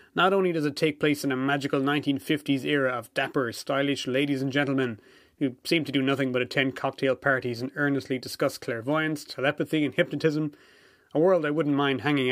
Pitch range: 130-160 Hz